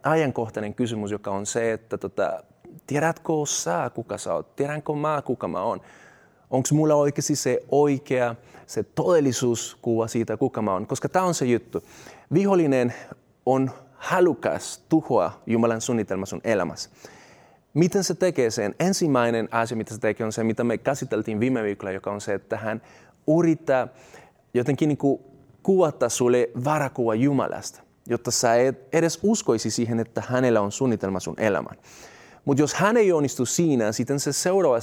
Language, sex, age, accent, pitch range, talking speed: Finnish, male, 30-49, native, 115-145 Hz, 155 wpm